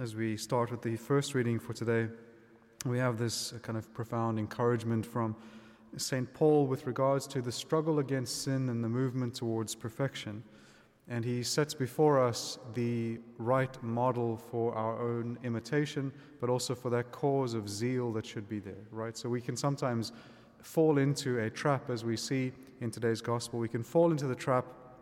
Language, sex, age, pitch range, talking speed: English, male, 30-49, 115-140 Hz, 180 wpm